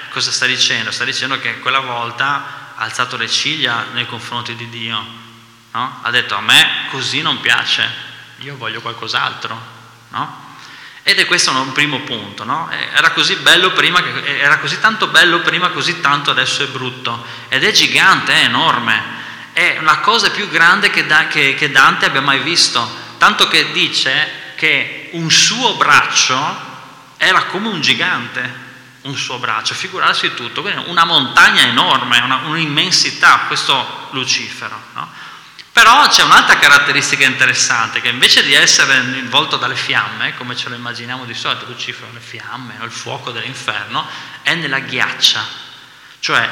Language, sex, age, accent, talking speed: Italian, male, 20-39, native, 145 wpm